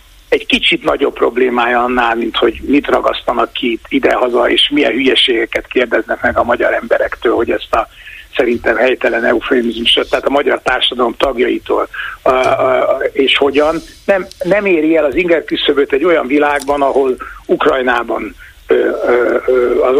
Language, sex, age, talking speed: Hungarian, male, 60-79, 135 wpm